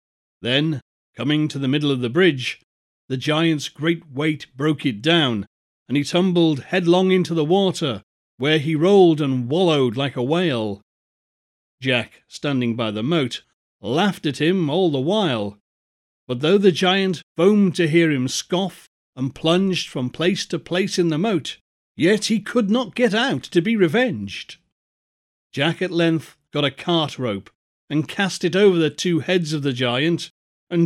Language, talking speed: English, 165 wpm